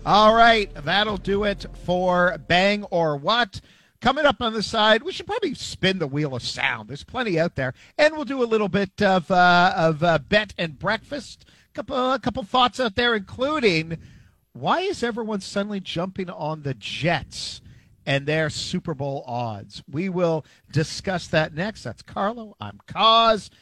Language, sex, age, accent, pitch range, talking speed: English, male, 50-69, American, 150-225 Hz, 175 wpm